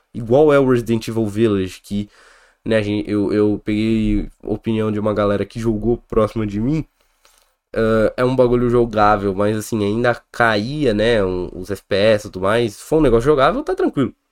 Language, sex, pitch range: Portuguese, male, 105-130 Hz